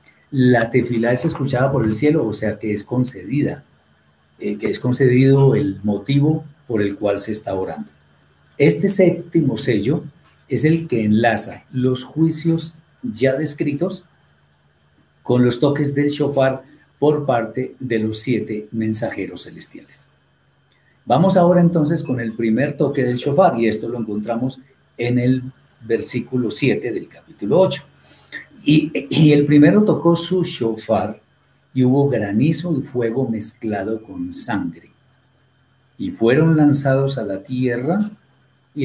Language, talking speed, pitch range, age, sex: Spanish, 135 wpm, 110-150 Hz, 50-69, male